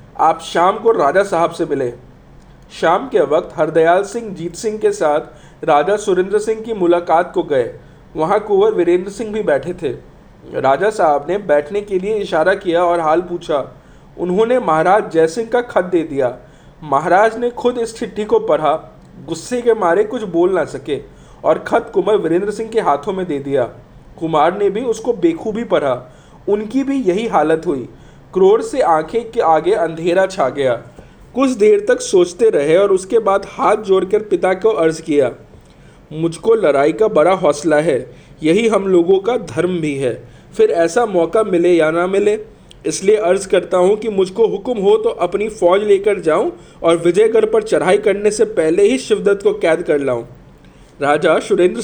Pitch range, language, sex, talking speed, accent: 165-230 Hz, Hindi, male, 180 wpm, native